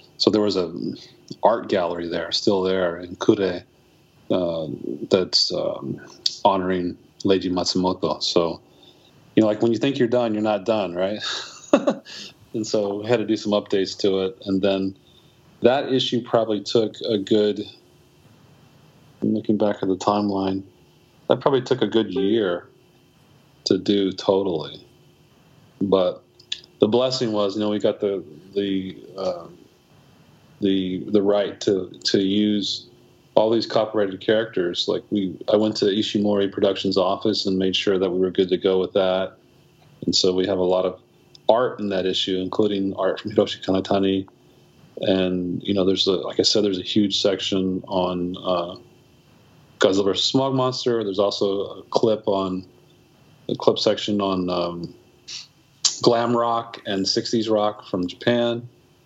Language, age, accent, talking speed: English, 40-59, American, 155 wpm